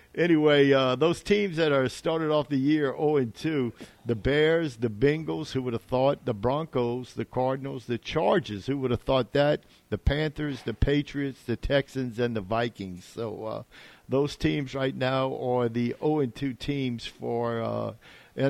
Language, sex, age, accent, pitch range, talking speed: English, male, 50-69, American, 115-135 Hz, 180 wpm